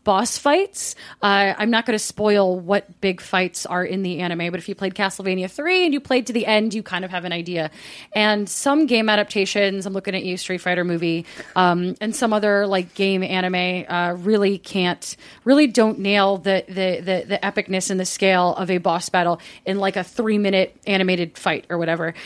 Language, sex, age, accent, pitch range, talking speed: English, female, 30-49, American, 185-220 Hz, 210 wpm